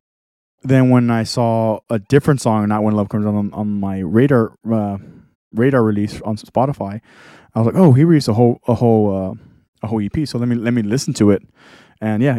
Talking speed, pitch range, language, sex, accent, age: 220 wpm, 105-125 Hz, English, male, American, 20-39